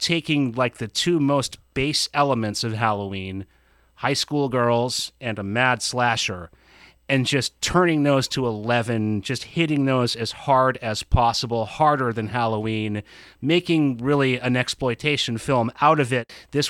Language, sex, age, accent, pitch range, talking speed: English, male, 30-49, American, 120-160 Hz, 145 wpm